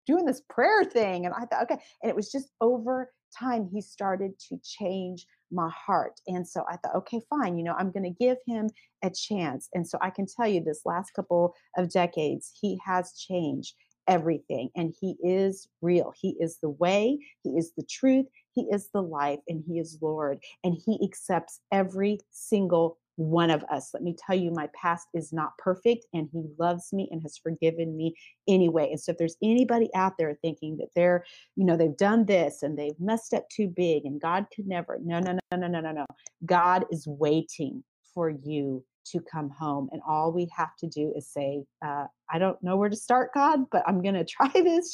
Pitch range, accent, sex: 165-205 Hz, American, female